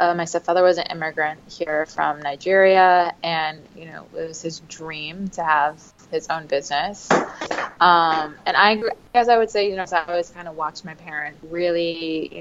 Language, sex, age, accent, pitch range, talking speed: English, female, 20-39, American, 155-175 Hz, 190 wpm